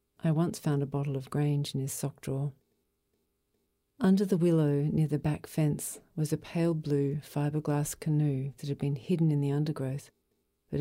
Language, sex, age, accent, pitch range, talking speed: English, female, 50-69, Australian, 140-160 Hz, 180 wpm